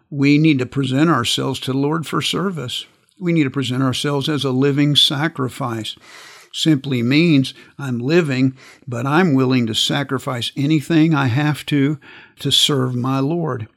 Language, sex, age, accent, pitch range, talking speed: English, male, 50-69, American, 130-155 Hz, 155 wpm